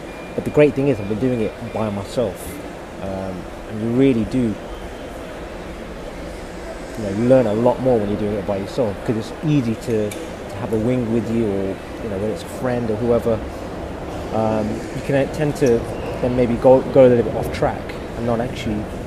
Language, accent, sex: English, British, male